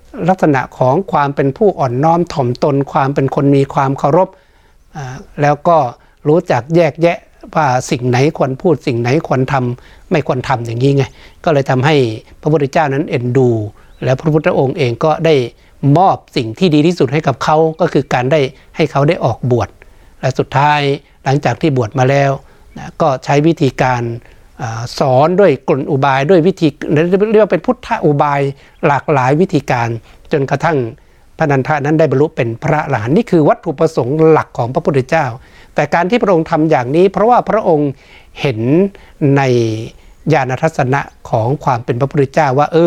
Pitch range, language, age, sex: 130-160 Hz, Thai, 60-79, male